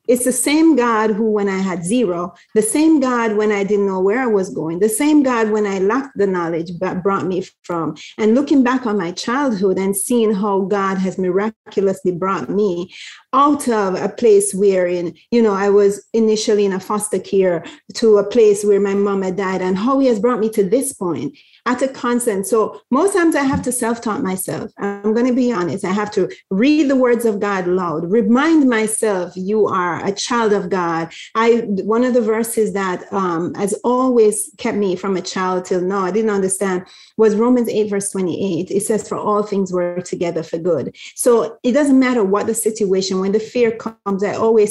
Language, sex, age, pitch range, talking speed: English, female, 30-49, 190-240 Hz, 210 wpm